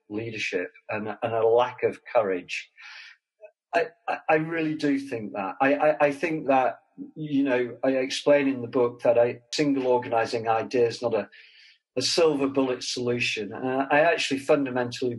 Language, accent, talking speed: English, British, 155 wpm